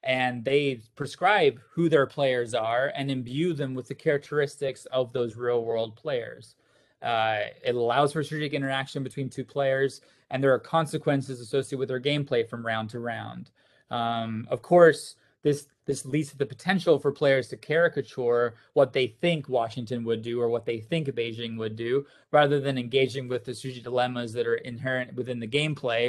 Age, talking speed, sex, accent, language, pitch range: 30-49, 175 wpm, male, American, English, 115-135 Hz